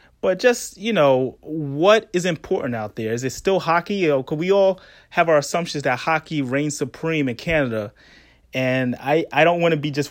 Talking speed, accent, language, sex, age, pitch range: 210 wpm, American, English, male, 30-49, 130-160 Hz